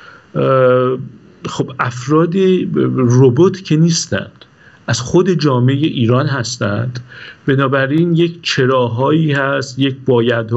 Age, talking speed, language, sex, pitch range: 50-69, 90 wpm, Persian, male, 115-155 Hz